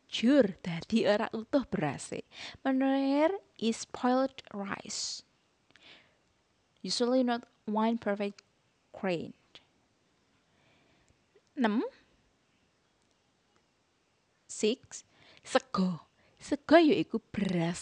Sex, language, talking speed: female, Indonesian, 65 wpm